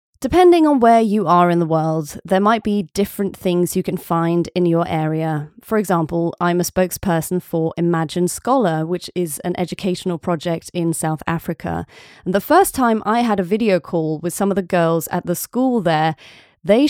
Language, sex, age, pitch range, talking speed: English, female, 20-39, 170-220 Hz, 190 wpm